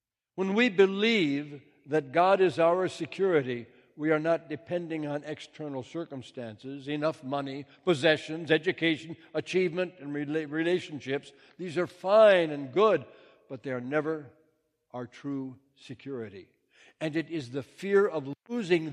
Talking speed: 130 wpm